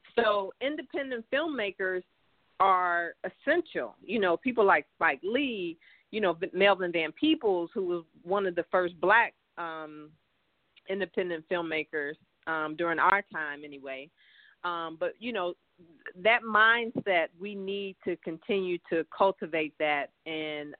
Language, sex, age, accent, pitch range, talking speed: English, female, 40-59, American, 165-205 Hz, 130 wpm